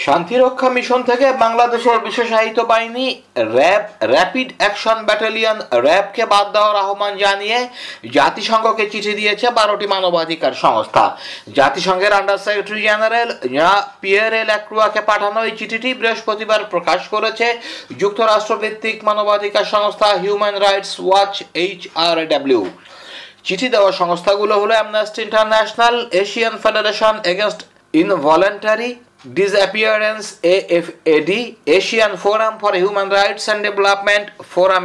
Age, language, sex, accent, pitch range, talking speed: 50-69, Bengali, male, native, 195-220 Hz, 75 wpm